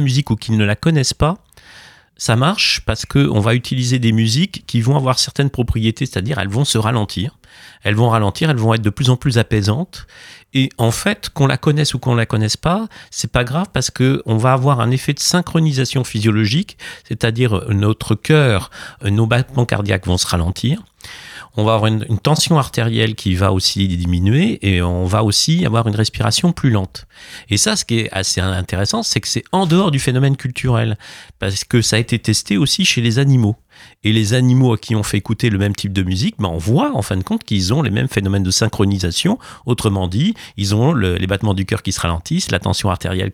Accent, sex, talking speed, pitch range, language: French, male, 220 wpm, 105-135 Hz, French